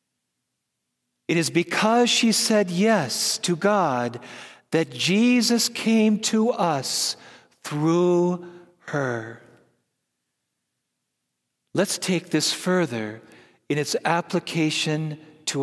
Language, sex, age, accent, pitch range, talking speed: English, male, 50-69, American, 135-215 Hz, 90 wpm